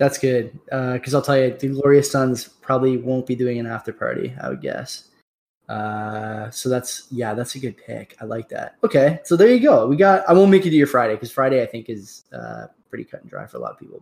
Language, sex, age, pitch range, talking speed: English, male, 10-29, 120-140 Hz, 255 wpm